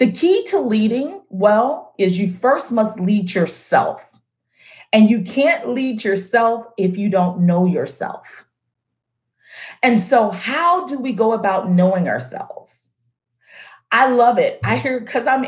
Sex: female